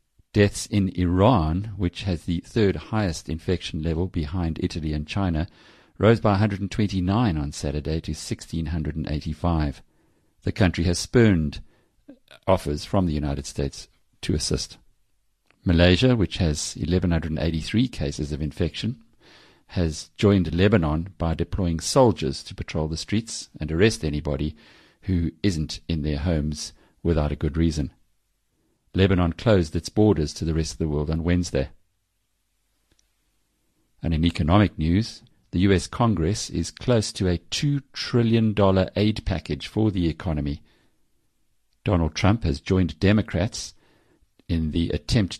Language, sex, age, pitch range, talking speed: English, male, 50-69, 80-100 Hz, 130 wpm